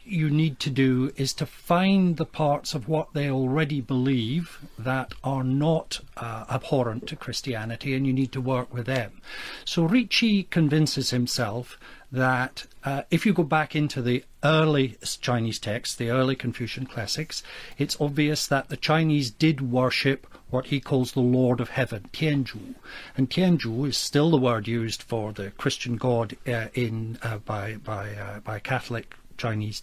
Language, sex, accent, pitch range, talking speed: English, male, British, 125-155 Hz, 165 wpm